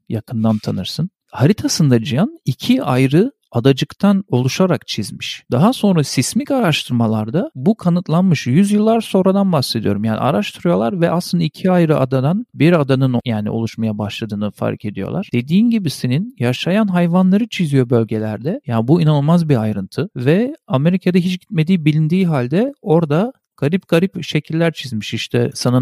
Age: 40-59